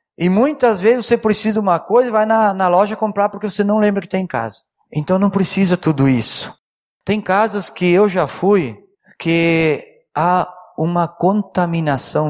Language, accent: Portuguese, Brazilian